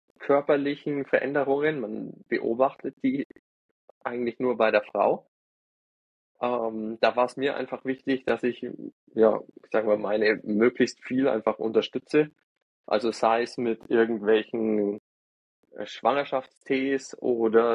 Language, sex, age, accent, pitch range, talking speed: German, male, 20-39, German, 110-135 Hz, 120 wpm